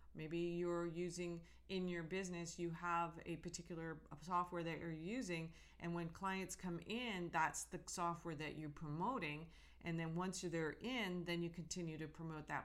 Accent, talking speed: American, 170 wpm